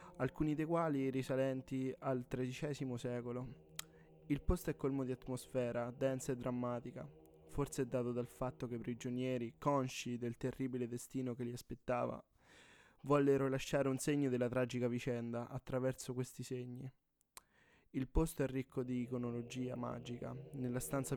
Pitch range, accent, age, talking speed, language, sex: 125-140 Hz, native, 20-39, 140 wpm, Italian, male